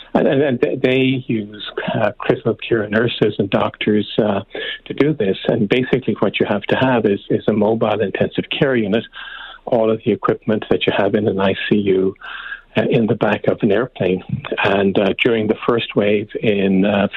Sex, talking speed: male, 180 wpm